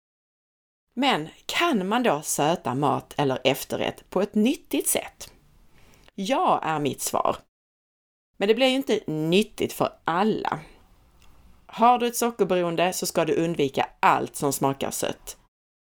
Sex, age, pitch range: female, 30-49, 145-220 Hz